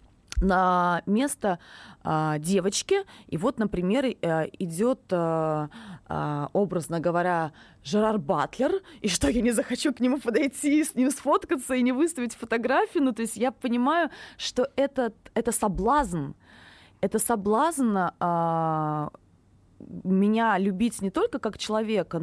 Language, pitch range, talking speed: Russian, 175-250 Hz, 125 wpm